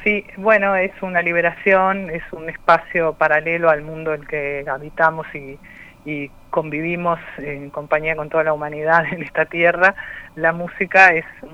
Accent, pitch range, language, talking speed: Argentinian, 150-170 Hz, Spanish, 160 wpm